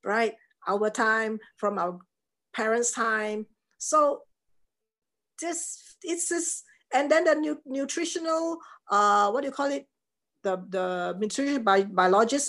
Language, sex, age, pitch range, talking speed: English, female, 50-69, 190-275 Hz, 130 wpm